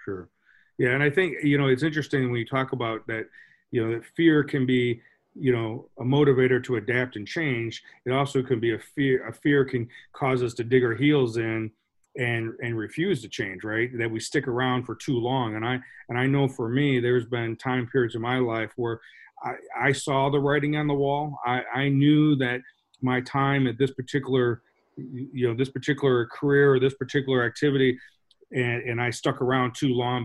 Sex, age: male, 40-59